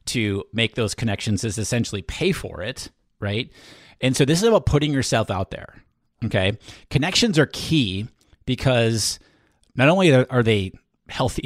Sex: male